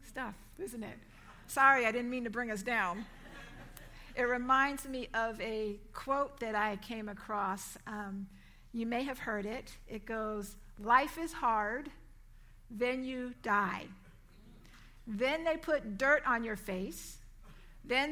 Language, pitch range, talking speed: English, 210-265 Hz, 140 wpm